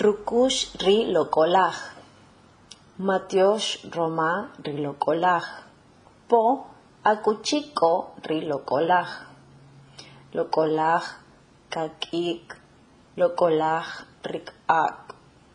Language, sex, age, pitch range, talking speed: English, female, 30-49, 150-170 Hz, 55 wpm